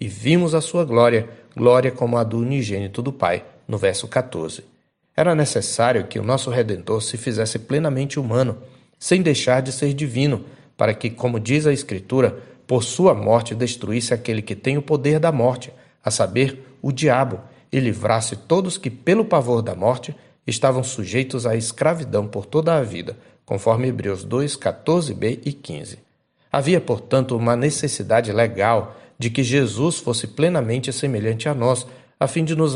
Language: Portuguese